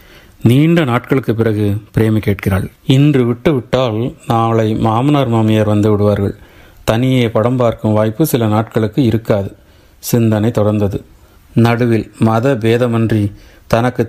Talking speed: 105 wpm